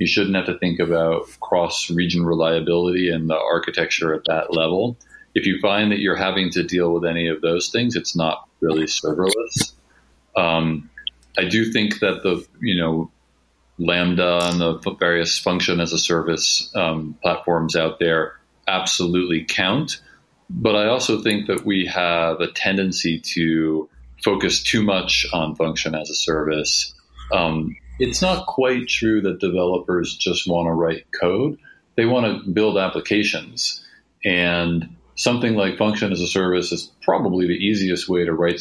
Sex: male